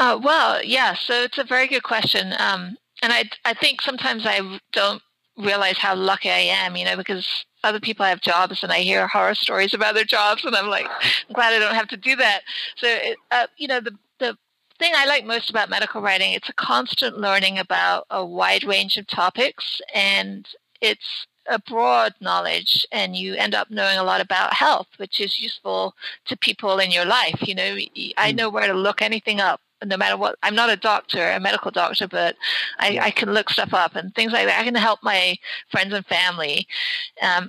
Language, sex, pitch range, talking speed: English, female, 185-235 Hz, 210 wpm